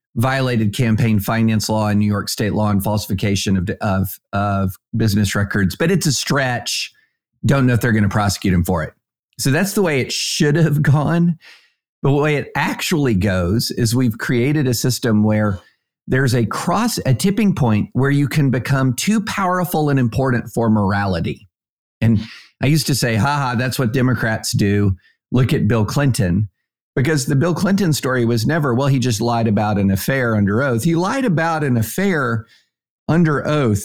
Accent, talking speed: American, 185 wpm